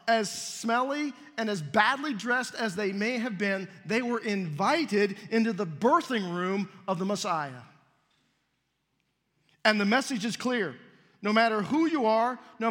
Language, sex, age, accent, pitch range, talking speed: English, male, 50-69, American, 190-235 Hz, 150 wpm